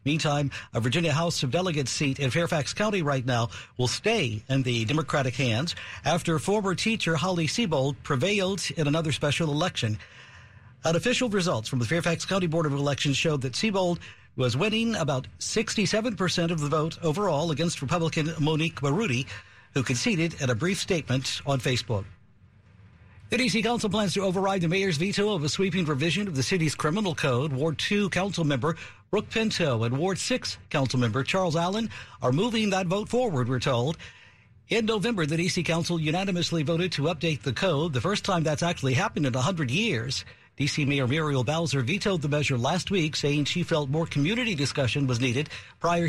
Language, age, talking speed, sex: English, 50-69, 175 wpm, male